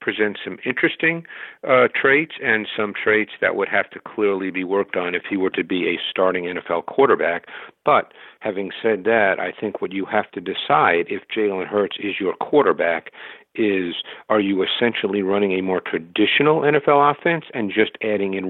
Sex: male